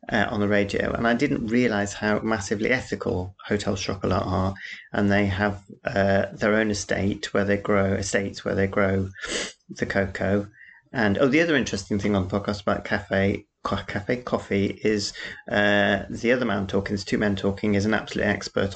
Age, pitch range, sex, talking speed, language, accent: 30-49, 100-105 Hz, male, 180 wpm, English, British